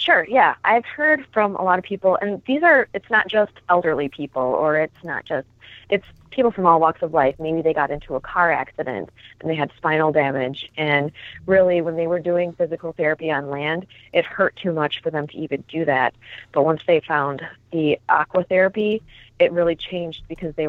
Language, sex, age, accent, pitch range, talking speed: English, female, 20-39, American, 140-175 Hz, 210 wpm